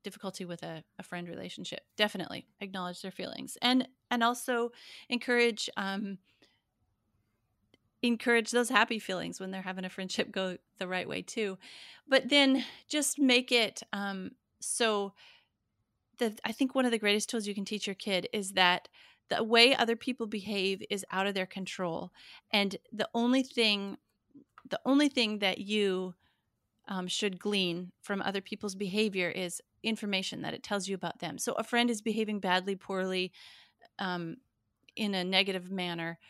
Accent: American